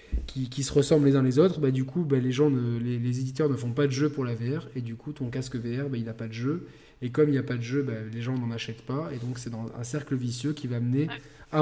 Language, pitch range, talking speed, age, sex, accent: French, 120-145 Hz, 325 wpm, 20-39, male, French